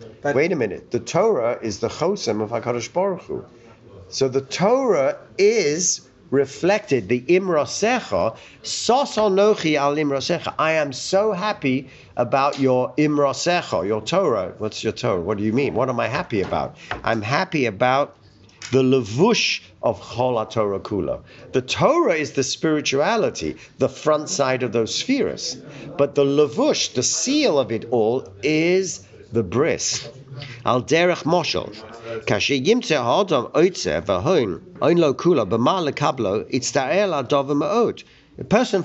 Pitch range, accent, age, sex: 120-175 Hz, British, 50-69, male